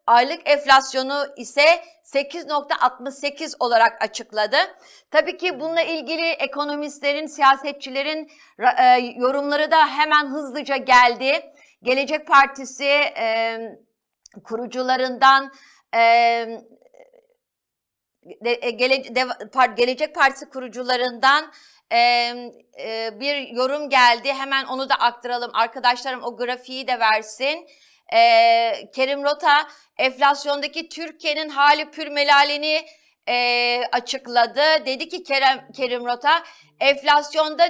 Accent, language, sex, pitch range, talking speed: native, Turkish, female, 255-310 Hz, 95 wpm